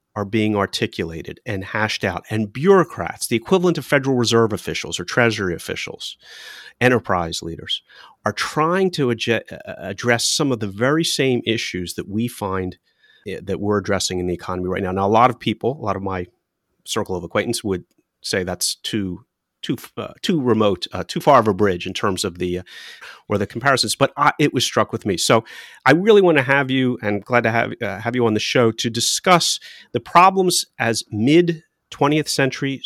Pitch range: 95-140 Hz